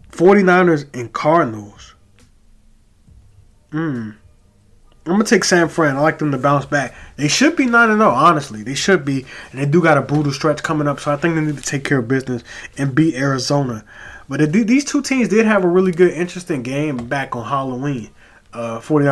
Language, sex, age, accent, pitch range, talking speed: English, male, 20-39, American, 130-170 Hz, 190 wpm